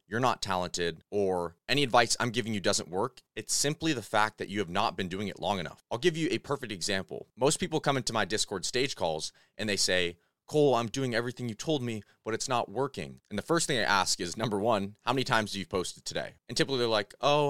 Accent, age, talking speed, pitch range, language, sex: American, 30-49, 250 wpm, 100-140 Hz, English, male